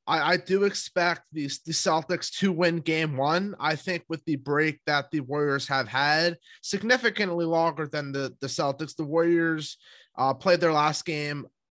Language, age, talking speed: English, 20-39, 170 wpm